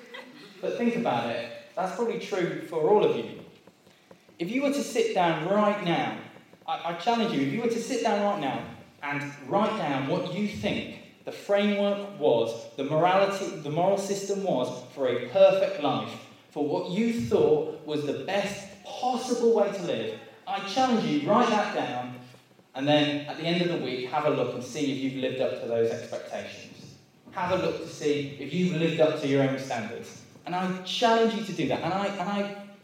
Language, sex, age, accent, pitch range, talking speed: English, male, 10-29, British, 150-225 Hz, 205 wpm